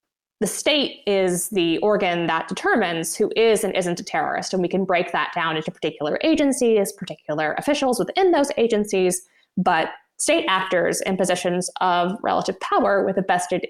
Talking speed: 165 wpm